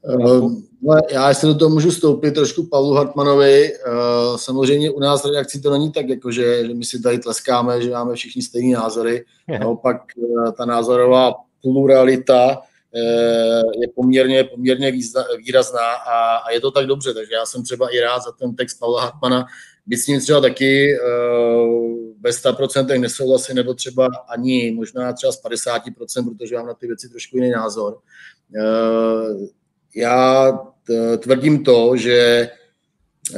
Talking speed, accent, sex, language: 145 wpm, native, male, Czech